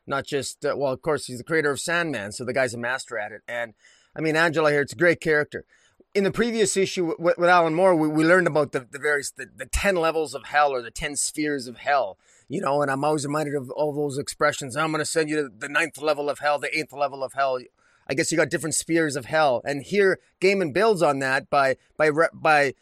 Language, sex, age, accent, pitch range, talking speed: English, male, 30-49, American, 145-180 Hz, 250 wpm